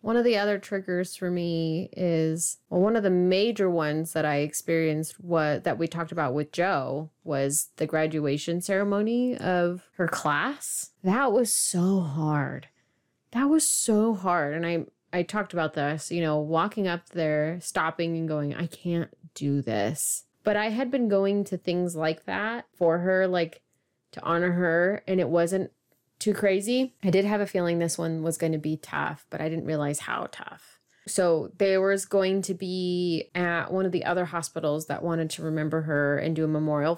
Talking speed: 190 wpm